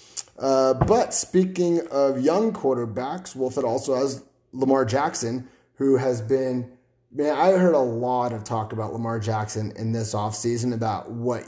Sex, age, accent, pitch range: male, 30-49, American, 115-140 Hz